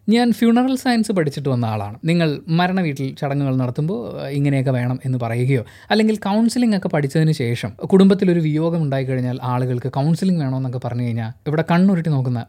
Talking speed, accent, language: 150 wpm, native, Malayalam